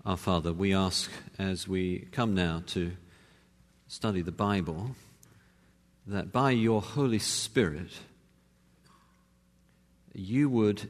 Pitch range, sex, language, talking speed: 85-125 Hz, male, English, 105 wpm